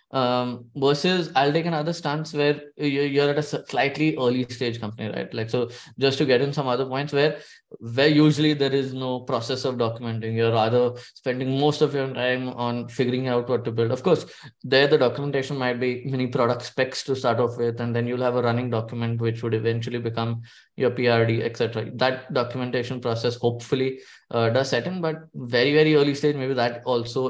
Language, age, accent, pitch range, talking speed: English, 20-39, Indian, 115-140 Hz, 200 wpm